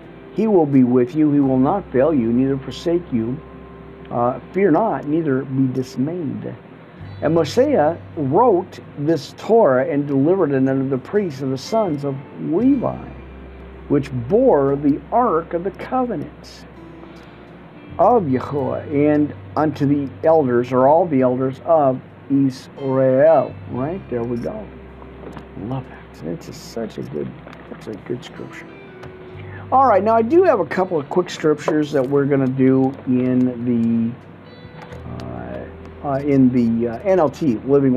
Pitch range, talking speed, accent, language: 120-165 Hz, 145 wpm, American, English